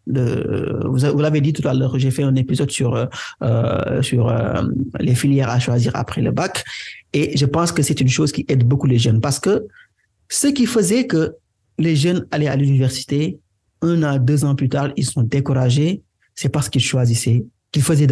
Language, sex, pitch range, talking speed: English, male, 120-160 Hz, 190 wpm